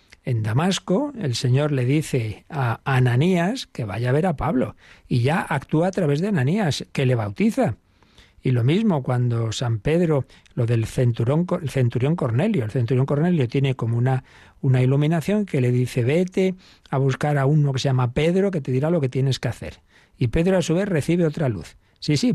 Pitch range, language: 120-155 Hz, Spanish